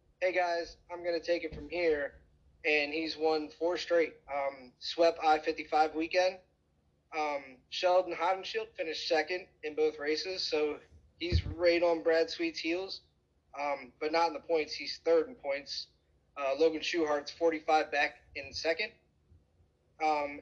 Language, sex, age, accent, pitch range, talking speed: English, male, 30-49, American, 135-170 Hz, 150 wpm